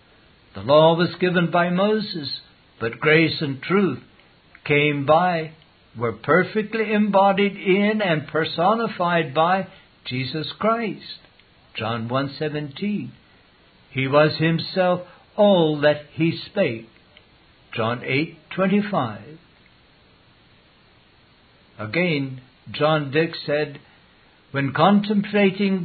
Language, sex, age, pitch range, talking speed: English, male, 60-79, 150-195 Hz, 90 wpm